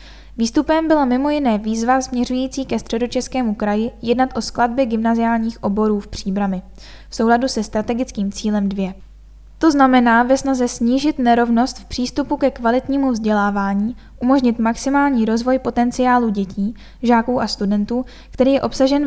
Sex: female